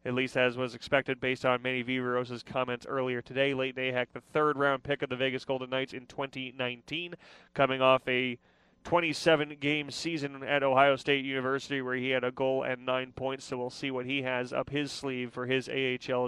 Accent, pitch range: American, 130-145 Hz